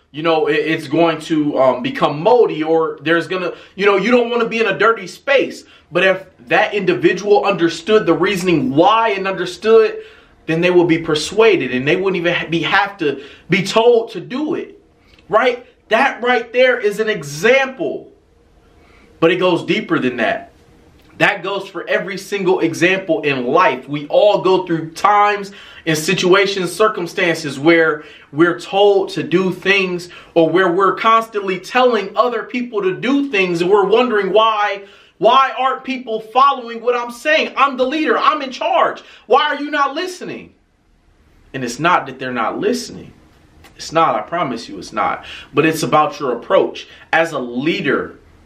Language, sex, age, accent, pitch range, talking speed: English, male, 30-49, American, 165-230 Hz, 170 wpm